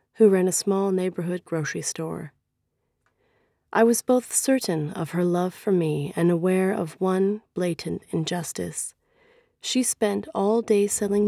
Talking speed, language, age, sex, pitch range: 145 wpm, Czech, 30-49, female, 170-225 Hz